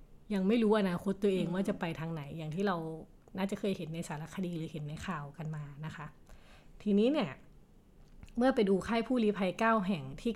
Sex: female